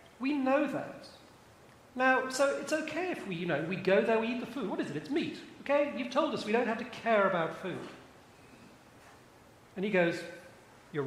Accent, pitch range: British, 165-255 Hz